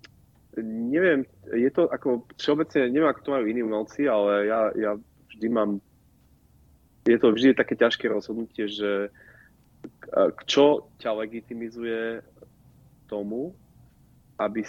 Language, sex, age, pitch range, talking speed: Slovak, male, 30-49, 100-115 Hz, 115 wpm